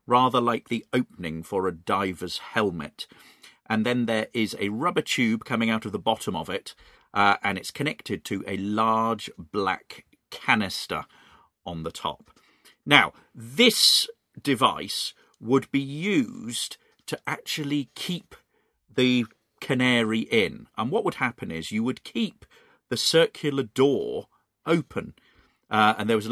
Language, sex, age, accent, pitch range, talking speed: English, male, 40-59, British, 100-140 Hz, 145 wpm